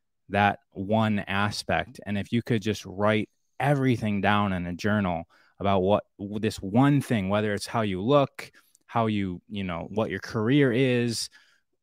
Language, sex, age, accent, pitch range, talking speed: English, male, 20-39, American, 100-125 Hz, 160 wpm